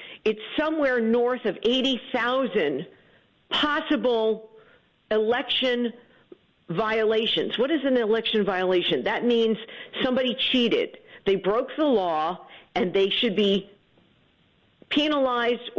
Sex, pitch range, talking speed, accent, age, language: female, 190-265 Hz, 100 wpm, American, 50-69, English